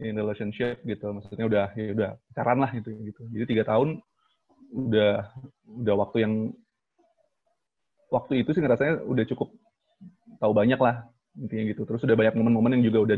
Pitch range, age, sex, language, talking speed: 110-130 Hz, 20-39, male, Indonesian, 170 wpm